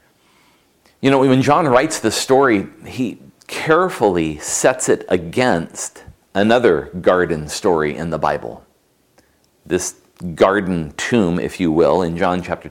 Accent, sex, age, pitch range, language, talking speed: American, male, 40-59, 85-120 Hz, English, 125 wpm